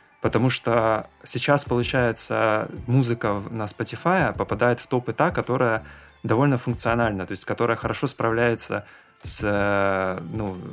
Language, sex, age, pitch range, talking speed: Russian, male, 20-39, 100-120 Hz, 125 wpm